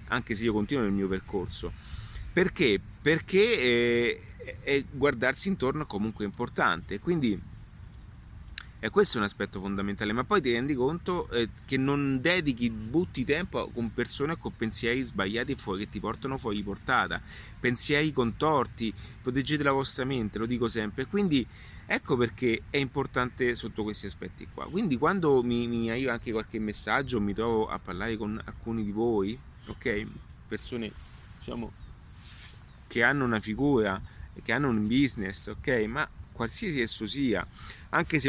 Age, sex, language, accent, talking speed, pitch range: 30-49, male, Italian, native, 150 wpm, 105-130 Hz